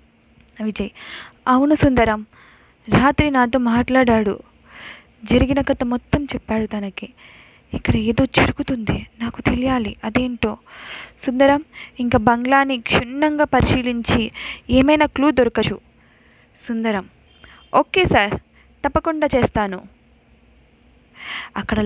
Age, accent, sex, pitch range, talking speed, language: 20-39, native, female, 205-245 Hz, 85 wpm, Telugu